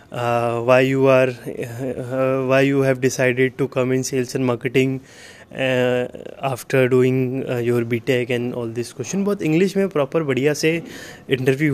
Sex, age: male, 20-39